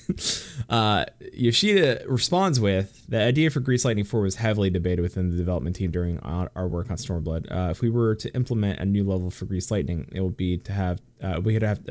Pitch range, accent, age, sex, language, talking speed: 95-120 Hz, American, 20-39, male, English, 215 wpm